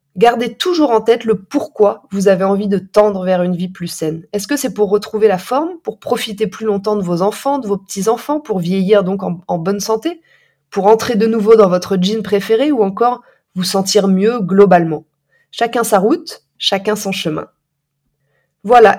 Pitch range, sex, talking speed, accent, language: 195-235 Hz, female, 195 wpm, French, French